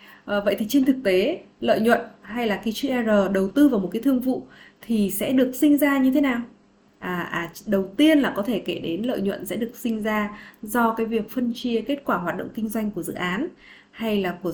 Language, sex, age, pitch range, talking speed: Vietnamese, female, 20-39, 200-270 Hz, 245 wpm